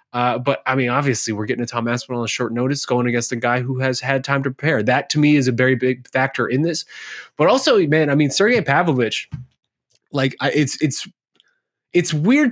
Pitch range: 120-145 Hz